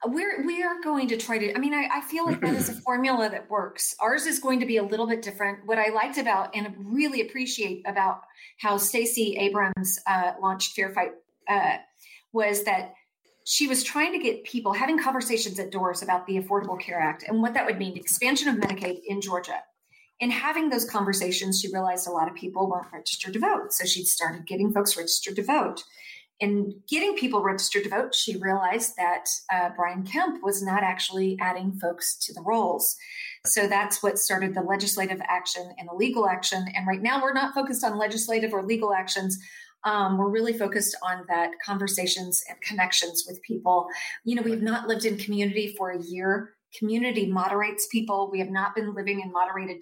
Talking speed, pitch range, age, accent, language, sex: 200 wpm, 190-235 Hz, 40-59, American, English, female